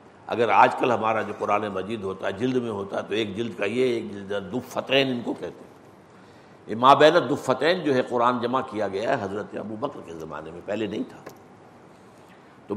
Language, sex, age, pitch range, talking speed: Urdu, male, 60-79, 105-160 Hz, 210 wpm